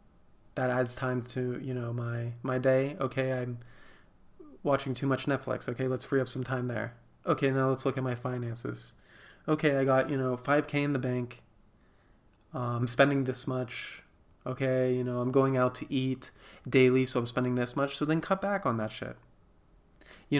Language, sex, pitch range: English, male, 125-140 Hz